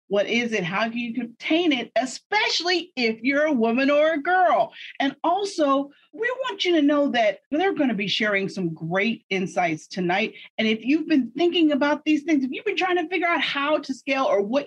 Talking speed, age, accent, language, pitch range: 215 wpm, 40-59, American, English, 200-305 Hz